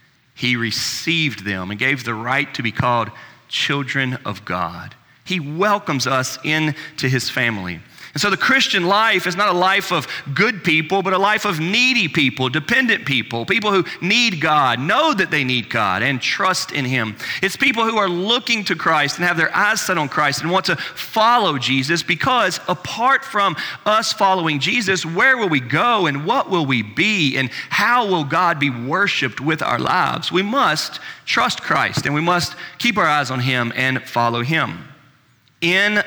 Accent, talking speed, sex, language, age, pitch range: American, 185 wpm, male, English, 40-59, 125-170 Hz